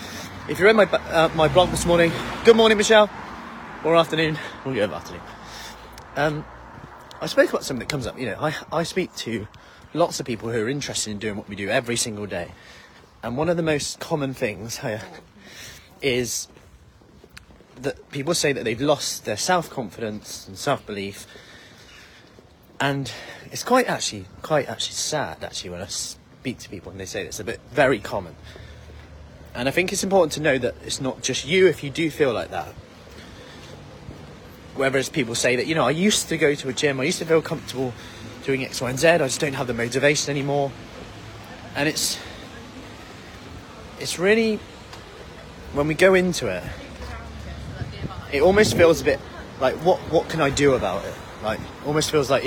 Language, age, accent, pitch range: English, 30-49, British, 110-160 Hz